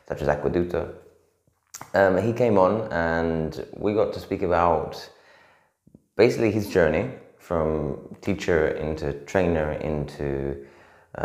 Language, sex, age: English, male, 20-39